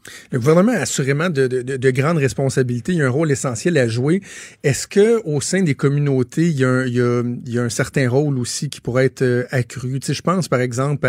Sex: male